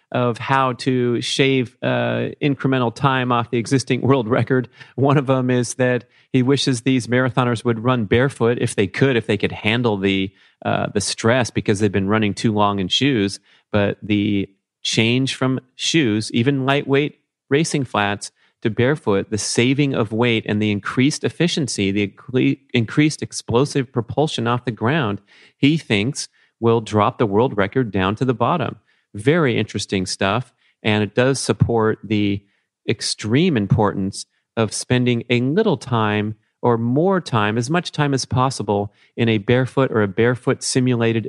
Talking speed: 160 wpm